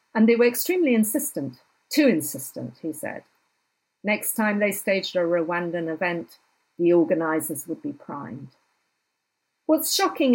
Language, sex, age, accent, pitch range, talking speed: English, female, 50-69, British, 185-240 Hz, 135 wpm